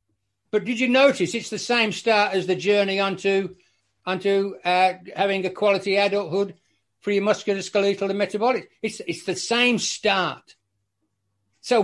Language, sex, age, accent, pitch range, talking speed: English, male, 60-79, British, 170-210 Hz, 145 wpm